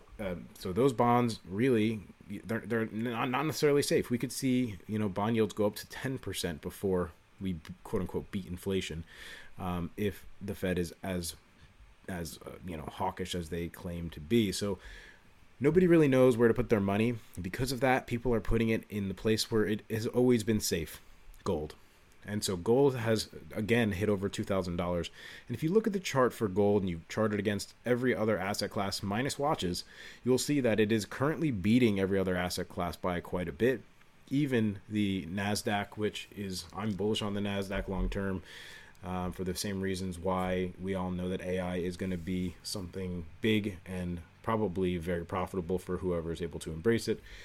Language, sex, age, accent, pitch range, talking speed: English, male, 30-49, American, 90-115 Hz, 190 wpm